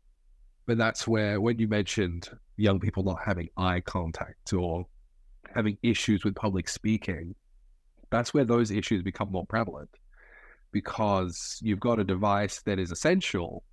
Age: 30-49